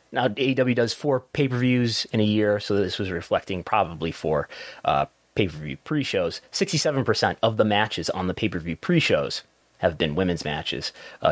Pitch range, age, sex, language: 90-125 Hz, 30-49, male, English